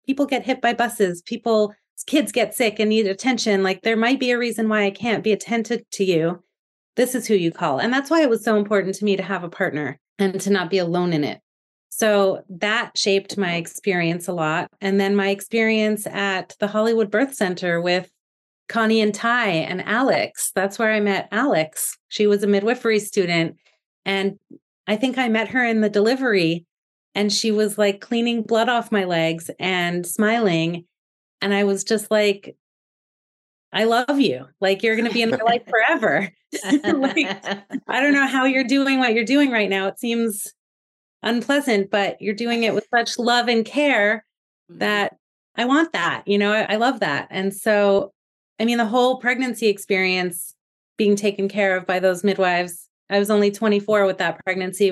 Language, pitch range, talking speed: English, 195-235 Hz, 190 wpm